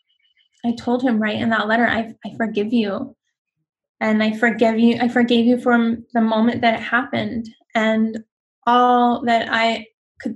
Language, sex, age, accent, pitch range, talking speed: English, female, 10-29, American, 220-240 Hz, 170 wpm